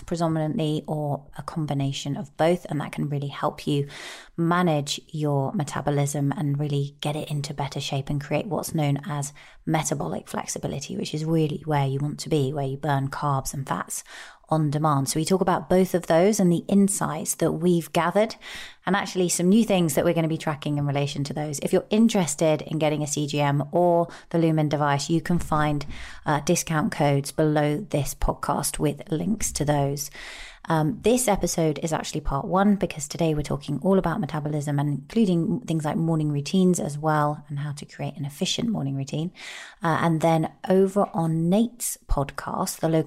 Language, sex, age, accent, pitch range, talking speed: English, female, 30-49, British, 145-175 Hz, 190 wpm